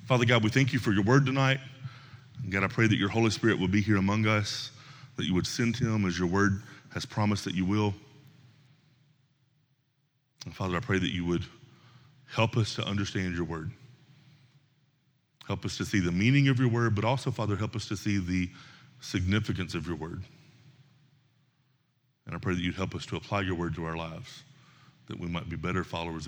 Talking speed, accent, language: 205 wpm, American, English